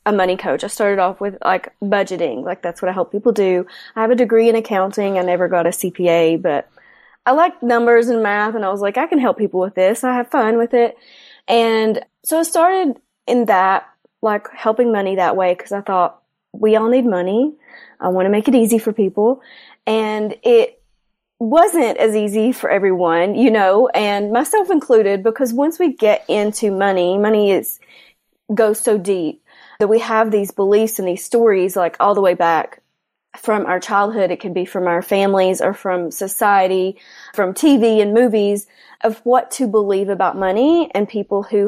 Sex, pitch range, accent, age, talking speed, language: female, 190-240 Hz, American, 30-49, 195 wpm, English